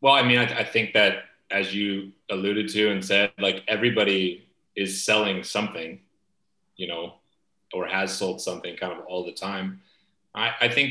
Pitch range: 100-120 Hz